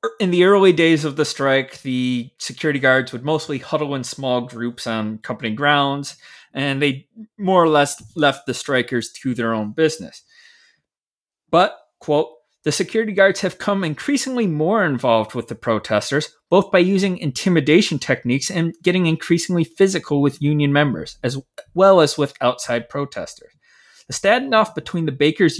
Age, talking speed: 30-49, 155 wpm